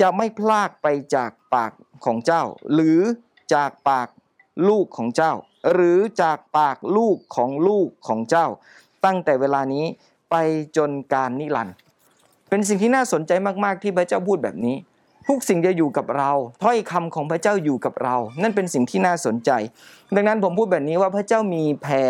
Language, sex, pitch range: Thai, male, 140-190 Hz